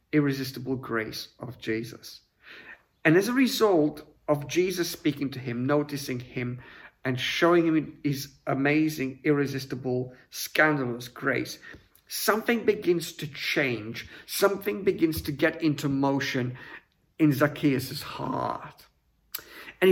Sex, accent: male, British